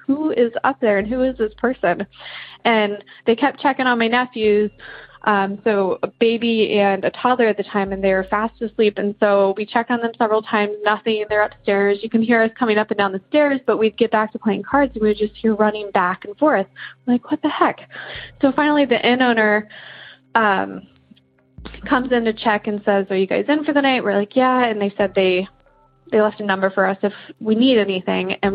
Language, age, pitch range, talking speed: English, 20-39, 205-250 Hz, 230 wpm